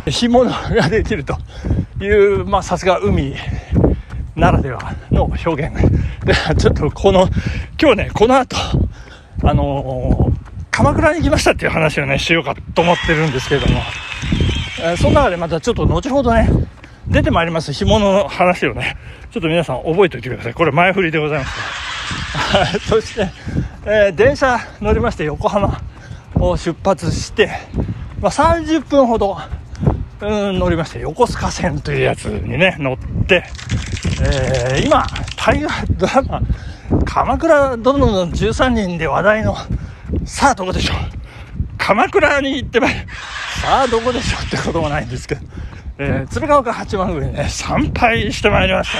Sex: male